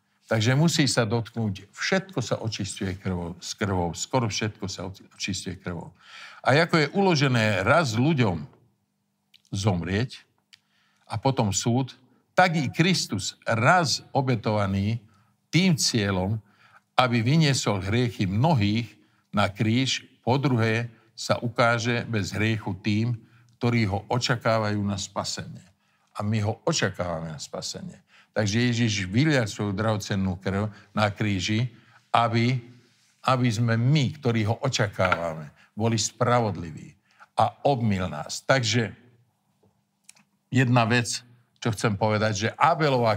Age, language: 50-69, Slovak